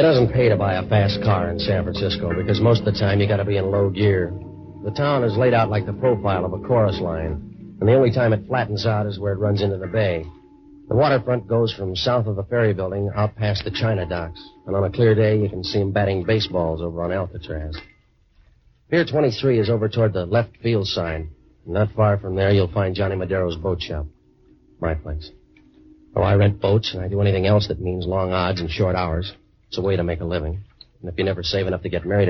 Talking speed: 245 wpm